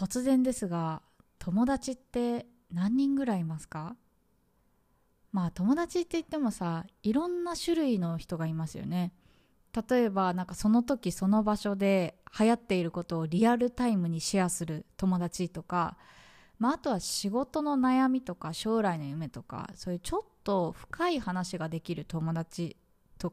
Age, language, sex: 20-39, Japanese, female